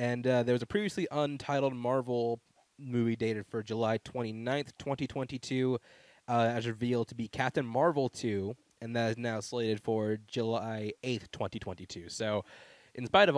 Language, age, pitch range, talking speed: English, 20-39, 105-130 Hz, 195 wpm